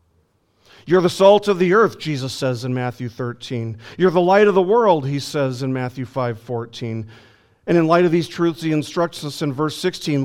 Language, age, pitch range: English, 40-59, 115-155 Hz